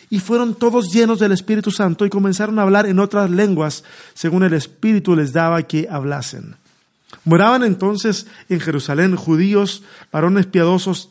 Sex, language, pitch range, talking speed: male, Spanish, 150-195 Hz, 150 wpm